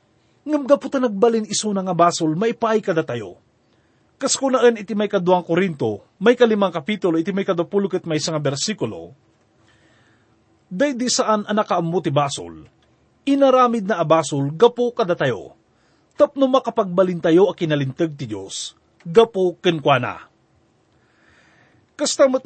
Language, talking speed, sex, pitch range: English, 115 wpm, male, 155-230 Hz